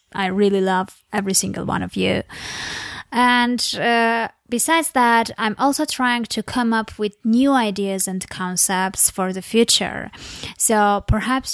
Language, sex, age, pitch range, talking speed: English, female, 20-39, 190-235 Hz, 145 wpm